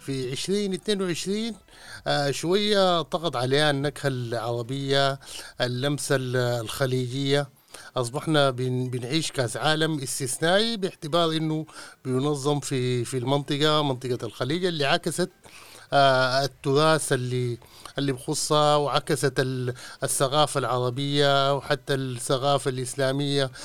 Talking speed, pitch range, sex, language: 90 wpm, 130-155 Hz, male, Arabic